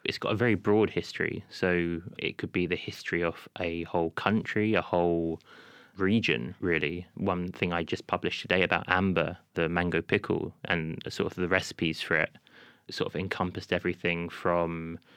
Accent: British